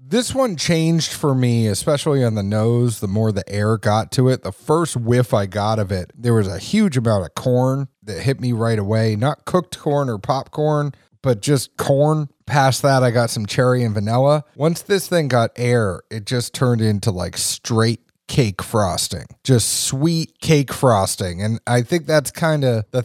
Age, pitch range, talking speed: 30-49, 110-140 Hz, 195 wpm